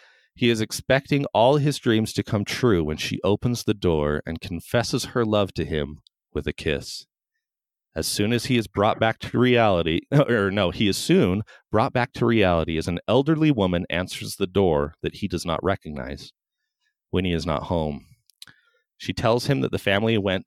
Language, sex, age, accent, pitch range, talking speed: English, male, 40-59, American, 85-120 Hz, 190 wpm